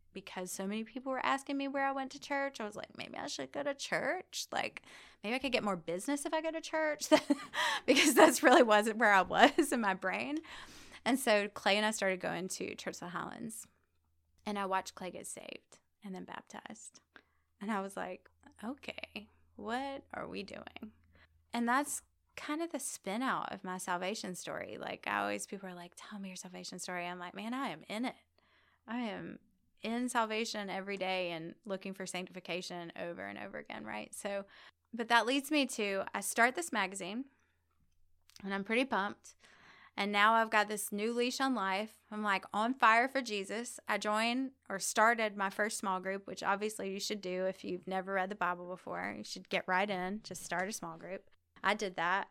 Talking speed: 205 wpm